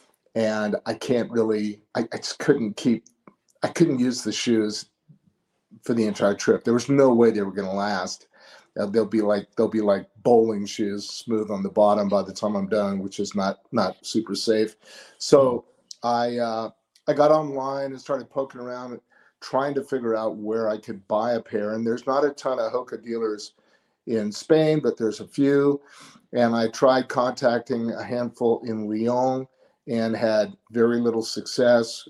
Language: English